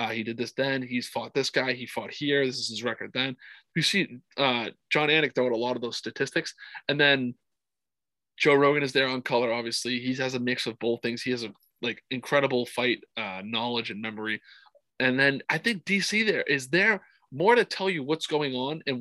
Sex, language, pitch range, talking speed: male, English, 120-150 Hz, 220 wpm